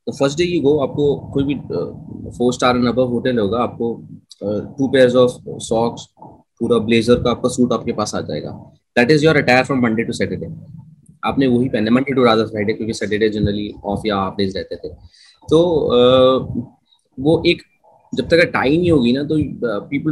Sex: male